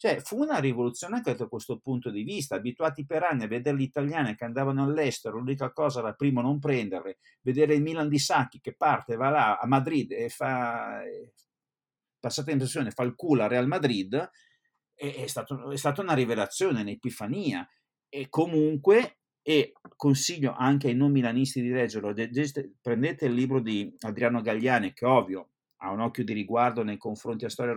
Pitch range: 120-155 Hz